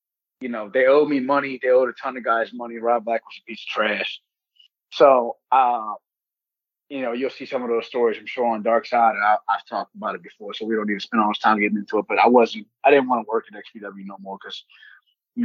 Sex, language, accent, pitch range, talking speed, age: male, English, American, 110-140 Hz, 265 wpm, 30-49